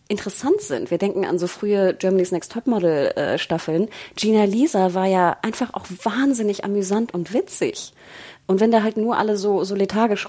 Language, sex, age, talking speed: German, female, 30-49, 175 wpm